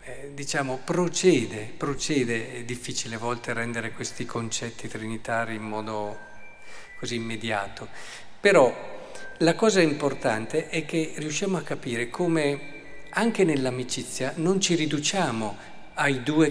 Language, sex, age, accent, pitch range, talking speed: Italian, male, 50-69, native, 120-160 Hz, 115 wpm